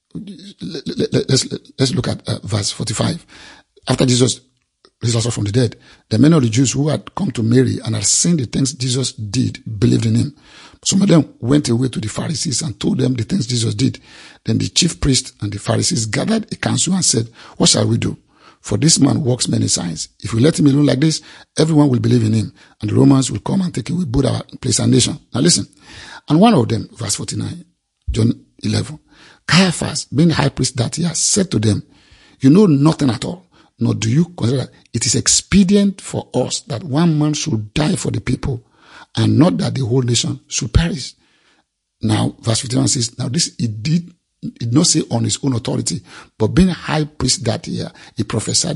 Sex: male